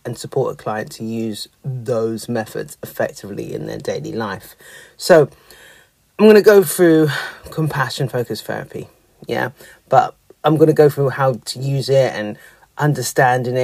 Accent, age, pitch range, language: British, 30-49, 115-150 Hz, English